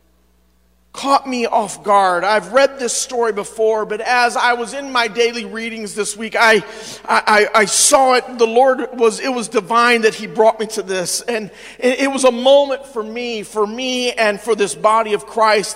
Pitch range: 225-275 Hz